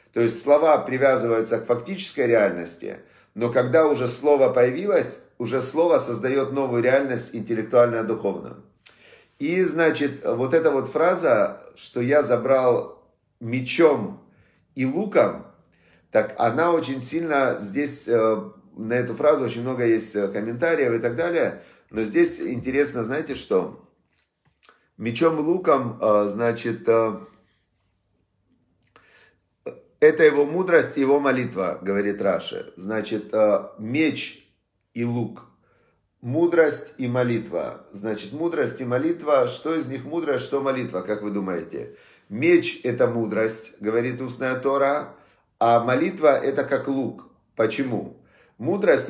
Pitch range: 115-145 Hz